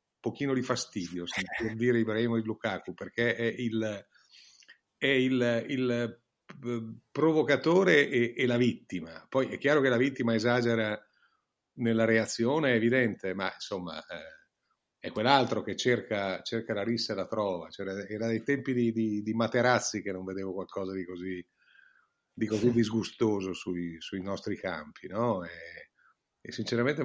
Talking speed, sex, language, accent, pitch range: 150 wpm, male, Italian, native, 105-125 Hz